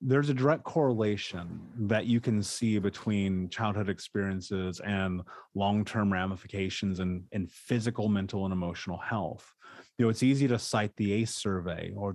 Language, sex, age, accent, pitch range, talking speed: English, male, 30-49, American, 100-120 Hz, 155 wpm